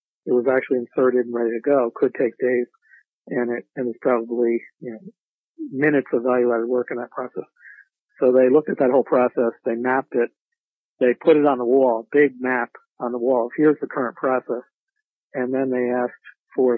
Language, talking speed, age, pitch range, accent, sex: English, 200 wpm, 50-69, 120-135 Hz, American, male